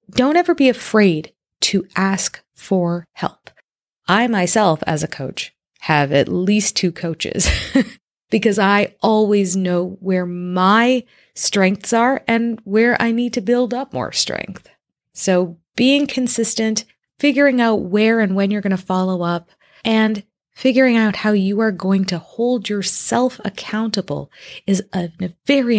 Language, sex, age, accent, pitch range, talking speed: English, female, 30-49, American, 170-220 Hz, 145 wpm